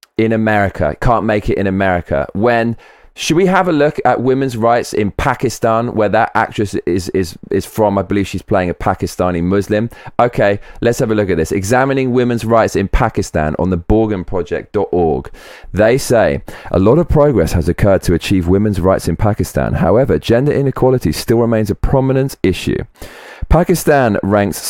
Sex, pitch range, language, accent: male, 95-125 Hz, English, British